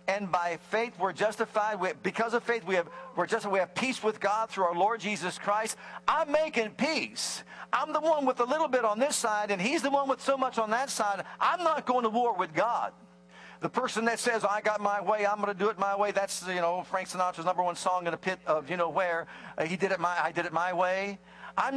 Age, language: 50-69, English